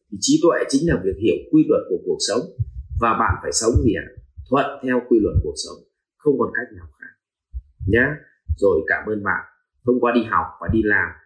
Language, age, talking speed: Vietnamese, 30-49, 215 wpm